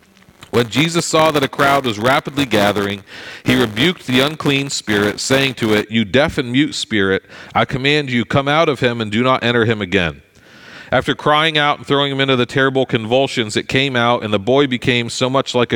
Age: 40-59